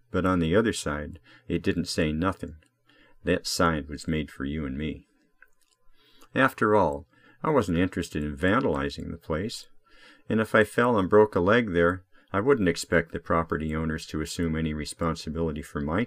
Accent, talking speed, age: American, 175 wpm, 50-69